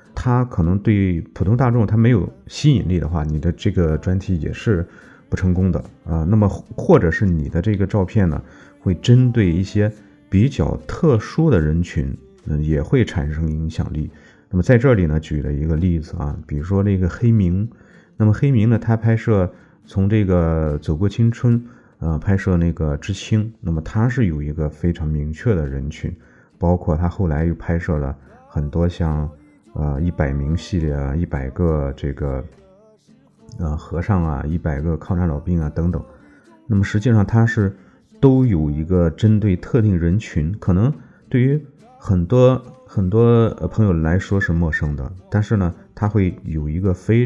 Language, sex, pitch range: Chinese, male, 80-105 Hz